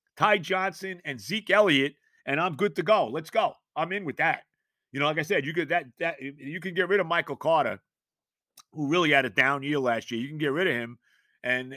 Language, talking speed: English, 240 wpm